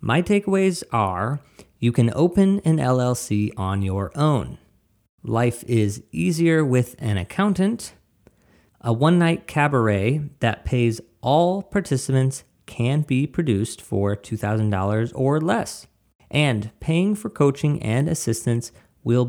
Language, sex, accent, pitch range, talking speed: English, male, American, 105-140 Hz, 120 wpm